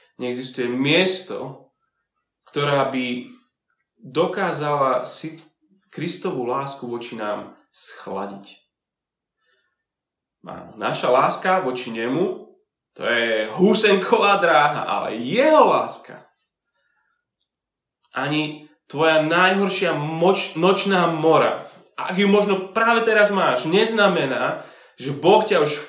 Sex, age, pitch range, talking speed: male, 30-49, 130-185 Hz, 95 wpm